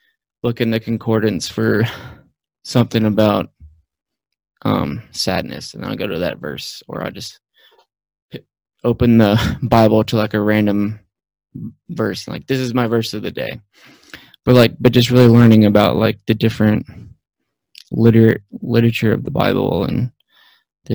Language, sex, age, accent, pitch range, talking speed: English, male, 20-39, American, 110-120 Hz, 145 wpm